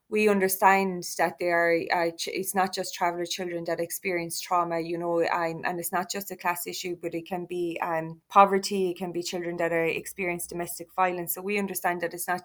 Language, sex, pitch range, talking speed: English, female, 170-195 Hz, 215 wpm